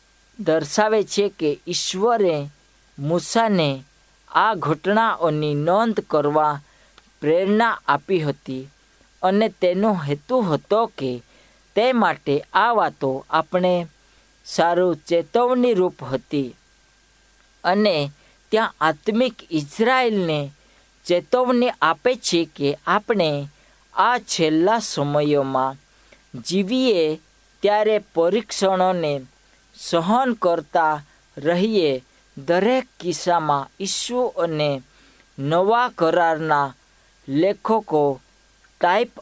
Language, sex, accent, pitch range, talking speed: Hindi, female, native, 150-215 Hz, 65 wpm